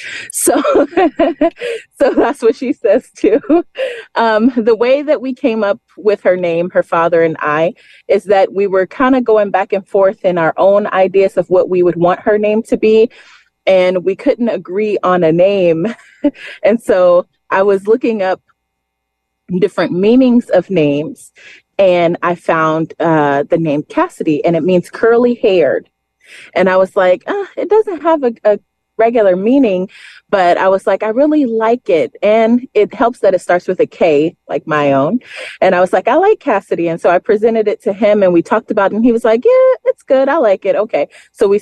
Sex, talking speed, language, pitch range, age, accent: female, 195 wpm, English, 180-265 Hz, 30-49, American